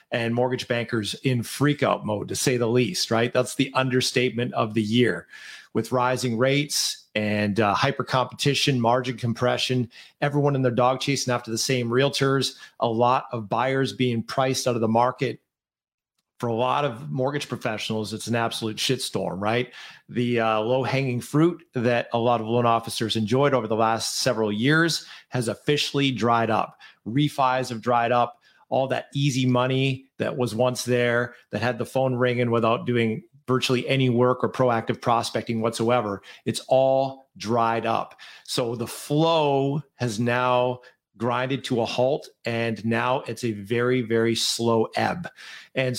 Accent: American